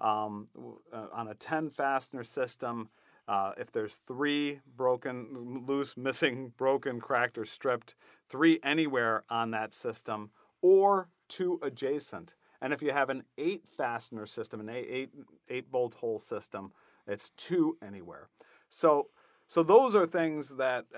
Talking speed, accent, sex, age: 135 wpm, American, male, 40-59